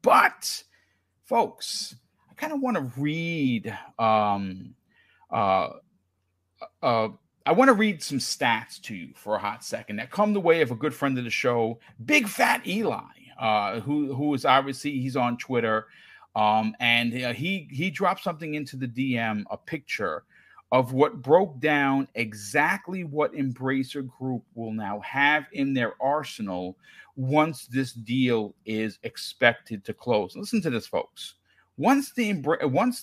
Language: English